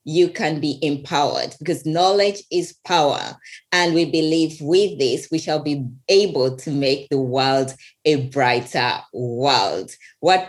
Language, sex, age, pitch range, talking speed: English, female, 20-39, 145-185 Hz, 145 wpm